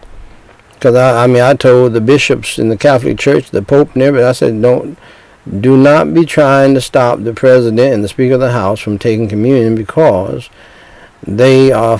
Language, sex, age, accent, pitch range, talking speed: English, male, 60-79, American, 115-160 Hz, 200 wpm